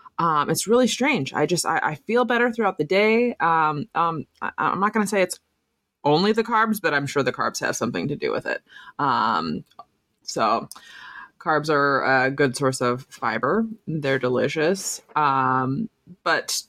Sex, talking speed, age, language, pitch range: female, 175 wpm, 20-39, English, 130-165 Hz